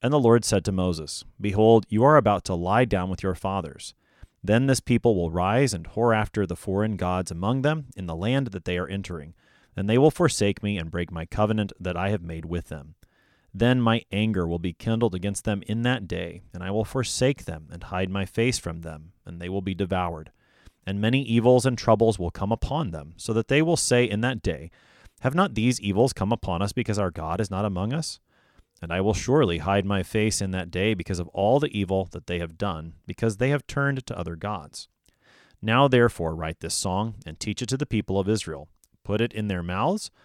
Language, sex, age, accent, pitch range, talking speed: English, male, 30-49, American, 90-115 Hz, 230 wpm